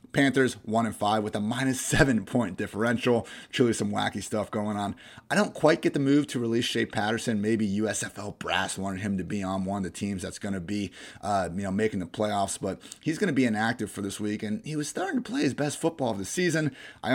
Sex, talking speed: male, 240 wpm